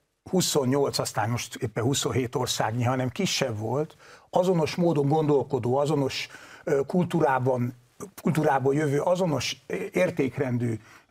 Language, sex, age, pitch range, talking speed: Hungarian, male, 60-79, 130-170 Hz, 95 wpm